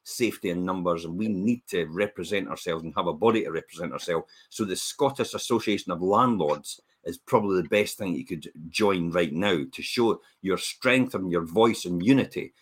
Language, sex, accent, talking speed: English, male, British, 195 wpm